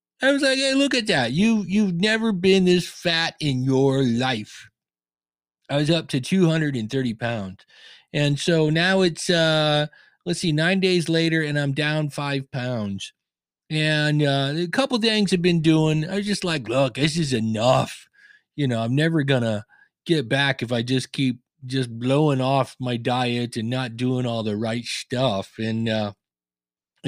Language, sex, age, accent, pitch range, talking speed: English, male, 40-59, American, 130-185 Hz, 175 wpm